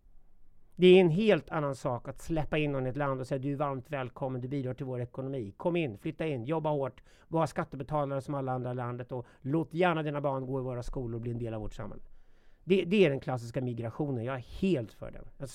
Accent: native